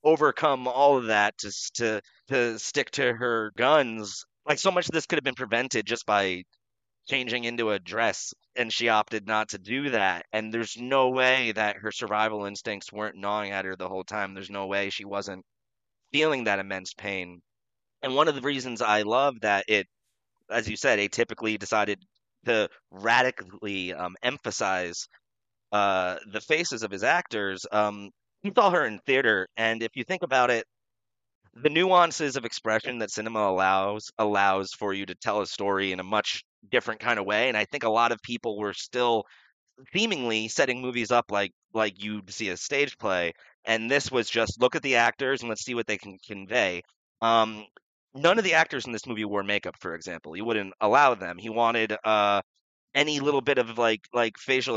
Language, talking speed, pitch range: English, 195 wpm, 100-120 Hz